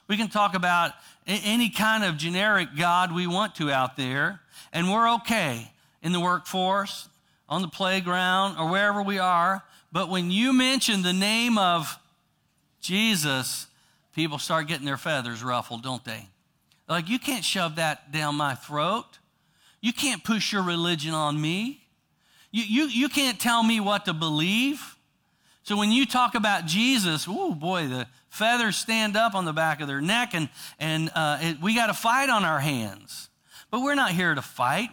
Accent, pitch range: American, 155-215 Hz